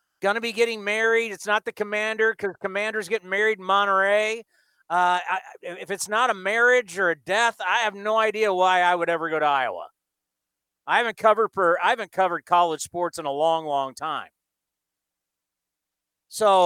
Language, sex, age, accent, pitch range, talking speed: English, male, 40-59, American, 175-215 Hz, 180 wpm